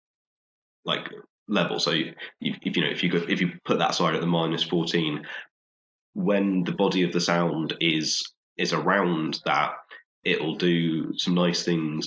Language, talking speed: English, 175 wpm